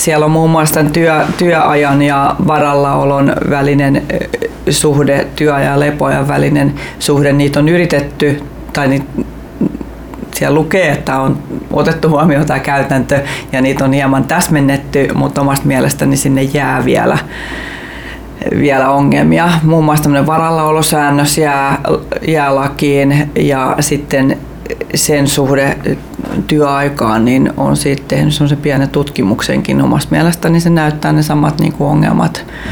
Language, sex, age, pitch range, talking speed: Finnish, female, 30-49, 140-150 Hz, 125 wpm